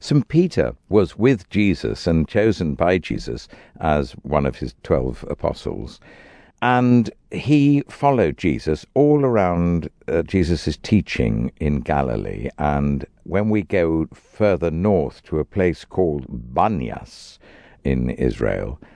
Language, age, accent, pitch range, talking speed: English, 60-79, British, 80-115 Hz, 125 wpm